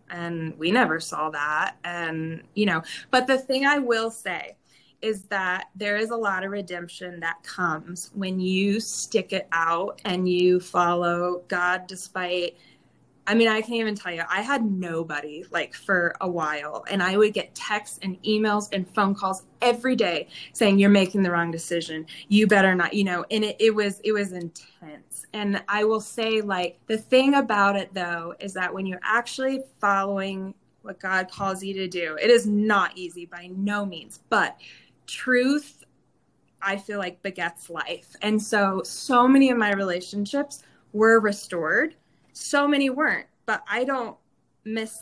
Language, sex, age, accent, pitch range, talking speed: English, female, 20-39, American, 180-220 Hz, 175 wpm